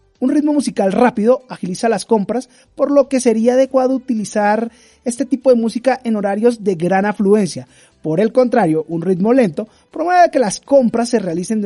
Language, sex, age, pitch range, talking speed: Spanish, male, 30-49, 190-250 Hz, 180 wpm